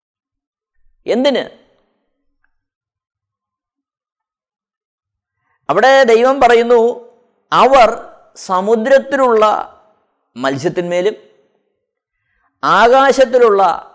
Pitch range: 180-240 Hz